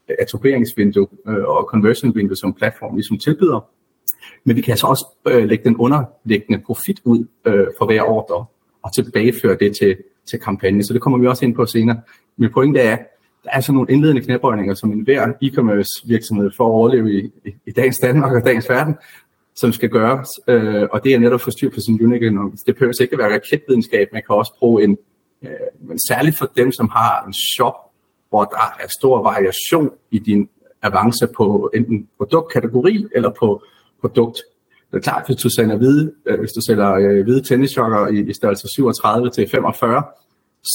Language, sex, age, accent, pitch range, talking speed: Danish, male, 30-49, native, 110-135 Hz, 170 wpm